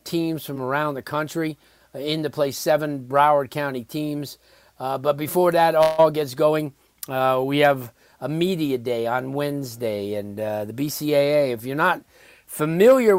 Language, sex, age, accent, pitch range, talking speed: English, male, 50-69, American, 130-155 Hz, 165 wpm